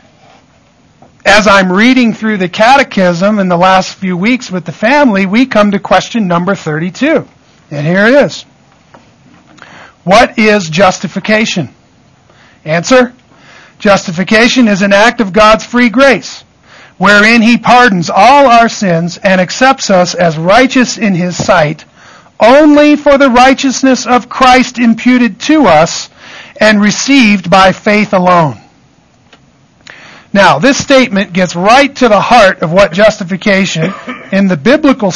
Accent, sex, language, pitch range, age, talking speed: American, male, English, 185-235 Hz, 50-69, 135 wpm